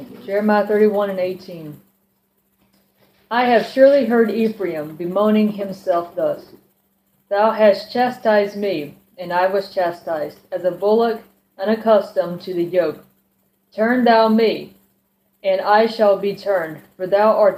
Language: English